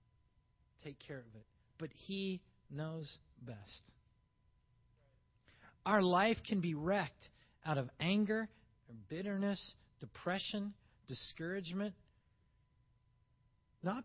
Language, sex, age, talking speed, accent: English, male, 40-59, 85 wpm, American